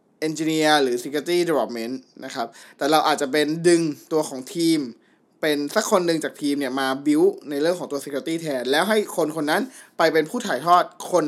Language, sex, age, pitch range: Thai, male, 20-39, 145-185 Hz